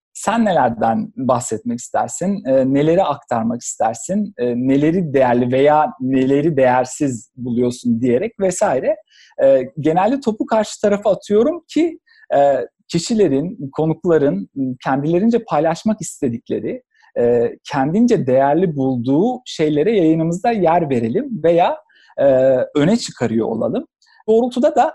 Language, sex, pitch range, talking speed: Turkish, male, 145-240 Hz, 95 wpm